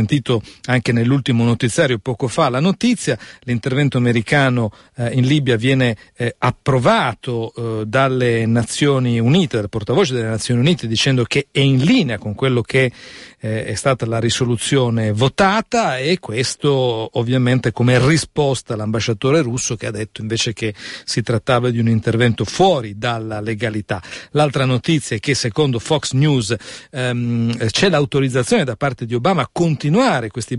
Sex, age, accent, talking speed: male, 50-69, native, 150 wpm